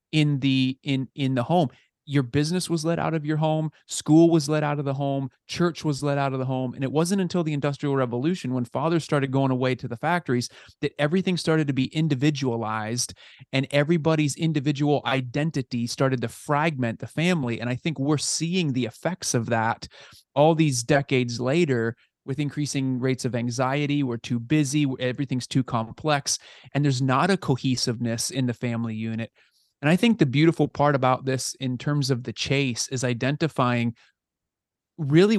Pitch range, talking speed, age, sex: 120-150 Hz, 180 wpm, 30-49, male